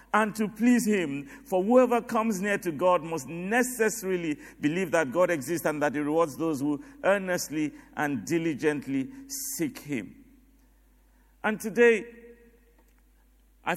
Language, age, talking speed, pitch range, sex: English, 50-69, 130 wpm, 155-235 Hz, male